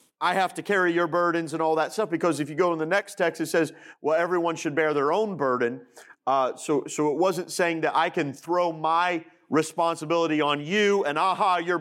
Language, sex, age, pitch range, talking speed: English, male, 40-59, 150-220 Hz, 225 wpm